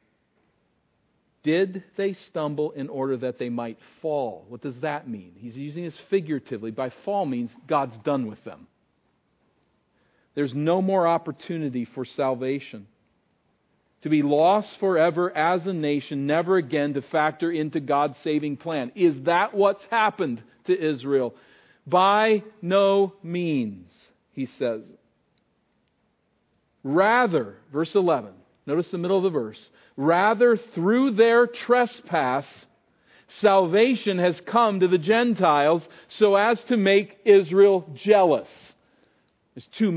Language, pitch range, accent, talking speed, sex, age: English, 145-205 Hz, American, 125 wpm, male, 50-69